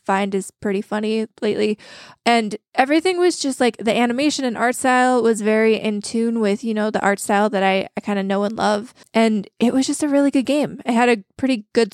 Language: English